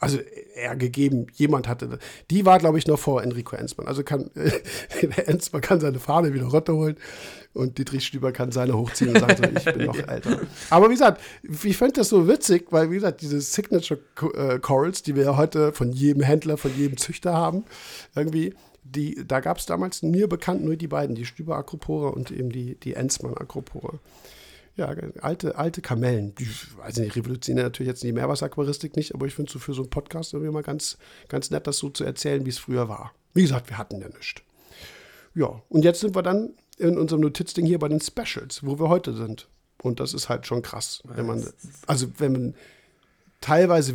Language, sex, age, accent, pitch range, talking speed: German, male, 50-69, German, 130-165 Hz, 205 wpm